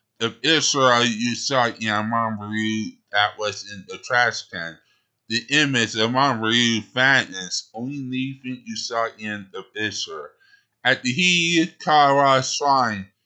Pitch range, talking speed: 110-150 Hz, 125 wpm